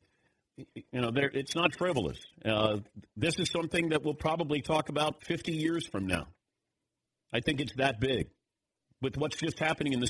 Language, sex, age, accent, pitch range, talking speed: English, male, 50-69, American, 110-150 Hz, 170 wpm